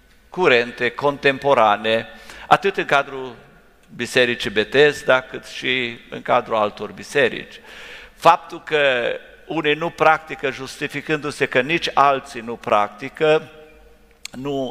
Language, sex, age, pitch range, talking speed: English, male, 50-69, 115-155 Hz, 100 wpm